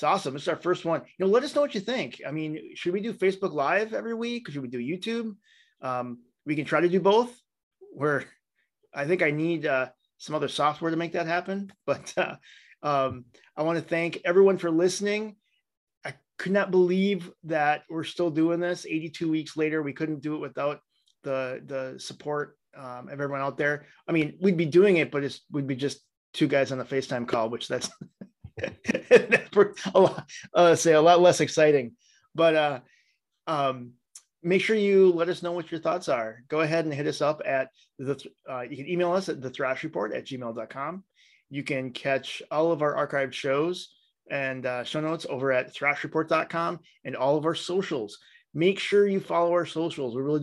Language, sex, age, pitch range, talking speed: English, male, 30-49, 140-175 Hz, 205 wpm